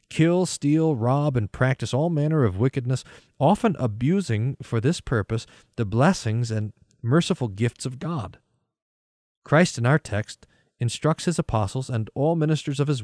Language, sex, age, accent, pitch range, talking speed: English, male, 40-59, American, 115-155 Hz, 150 wpm